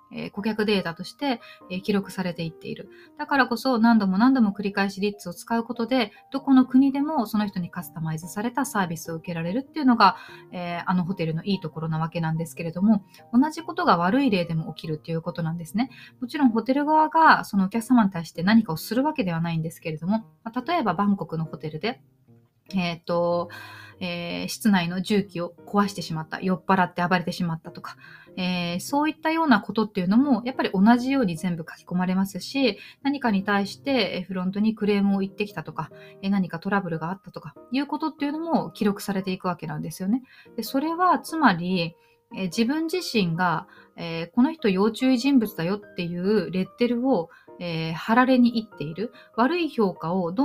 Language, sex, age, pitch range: Japanese, female, 20-39, 175-245 Hz